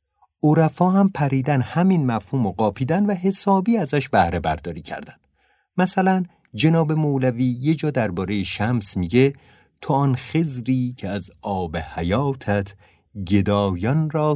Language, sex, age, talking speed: Persian, male, 50-69, 125 wpm